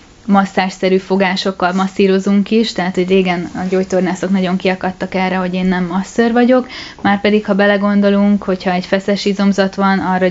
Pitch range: 180-195 Hz